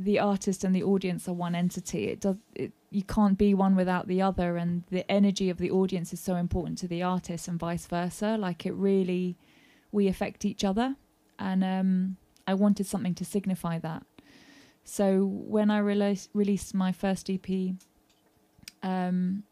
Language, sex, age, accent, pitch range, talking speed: English, female, 20-39, British, 175-195 Hz, 170 wpm